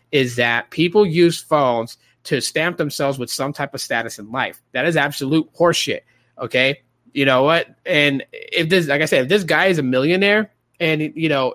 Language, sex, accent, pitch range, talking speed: English, male, American, 130-165 Hz, 195 wpm